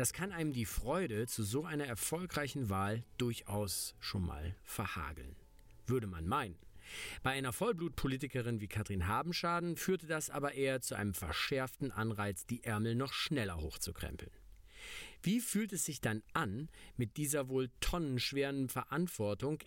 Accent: German